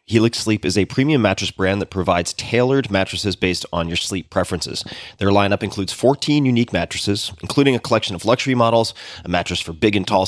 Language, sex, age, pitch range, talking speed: English, male, 30-49, 90-115 Hz, 200 wpm